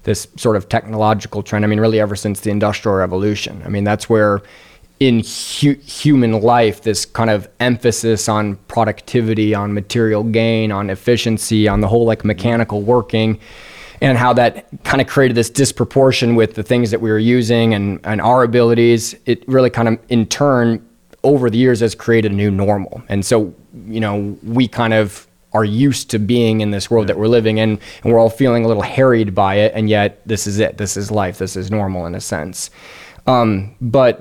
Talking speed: 200 wpm